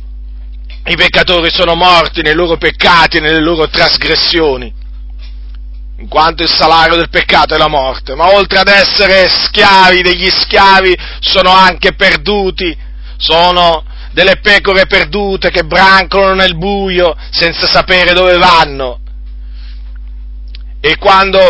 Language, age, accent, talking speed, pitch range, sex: Italian, 40-59, native, 125 wpm, 150-185 Hz, male